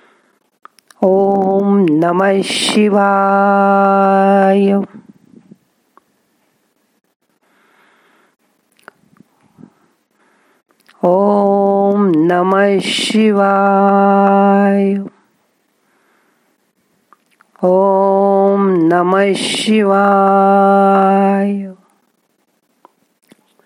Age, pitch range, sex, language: 40-59, 180-215 Hz, female, Marathi